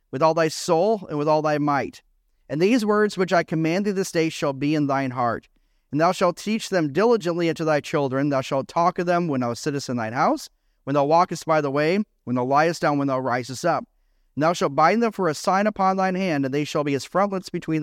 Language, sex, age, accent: English, male, 40-59, American